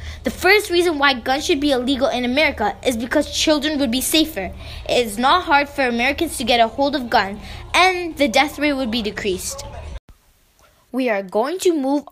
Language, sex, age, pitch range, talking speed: English, female, 10-29, 240-310 Hz, 195 wpm